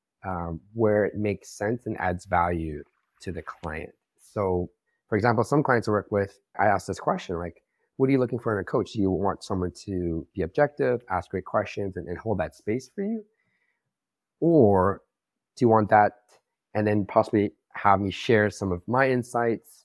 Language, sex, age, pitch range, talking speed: English, male, 30-49, 90-110 Hz, 195 wpm